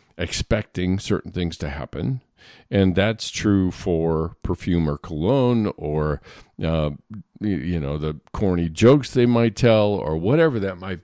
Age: 50-69